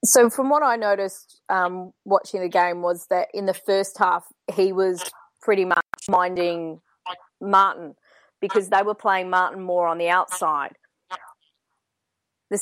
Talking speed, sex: 150 wpm, female